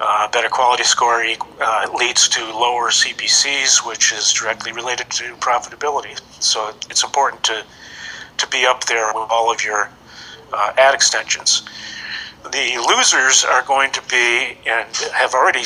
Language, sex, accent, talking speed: English, male, American, 150 wpm